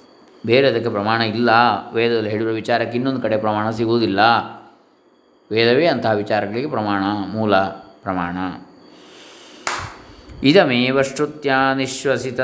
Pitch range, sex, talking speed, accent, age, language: 120-135 Hz, male, 85 wpm, native, 20-39, Kannada